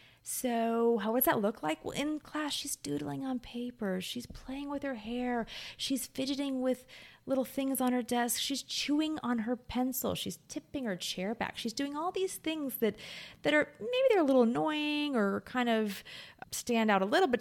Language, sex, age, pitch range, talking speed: English, female, 30-49, 180-270 Hz, 195 wpm